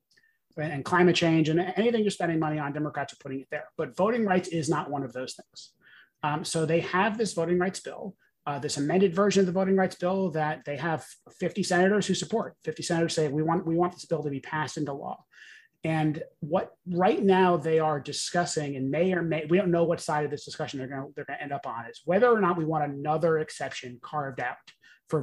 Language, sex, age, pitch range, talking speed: English, male, 30-49, 150-180 Hz, 235 wpm